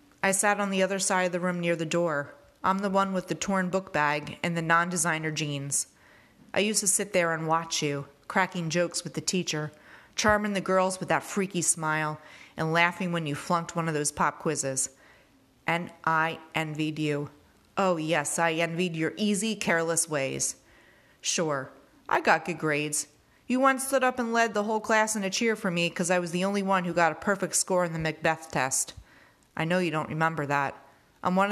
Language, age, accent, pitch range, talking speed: English, 30-49, American, 155-185 Hz, 205 wpm